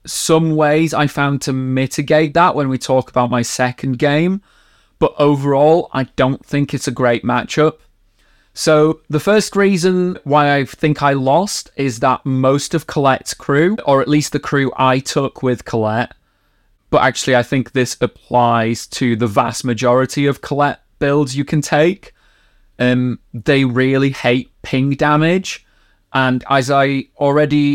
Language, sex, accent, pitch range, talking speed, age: English, male, British, 125-150 Hz, 160 wpm, 20-39